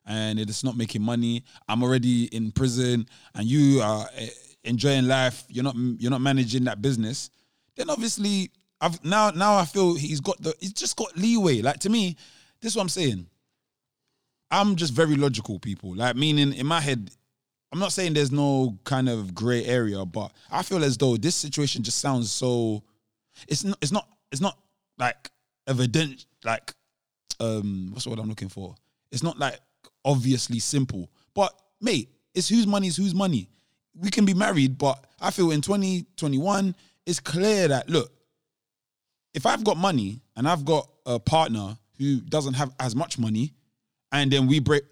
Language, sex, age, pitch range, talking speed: English, male, 20-39, 125-180 Hz, 180 wpm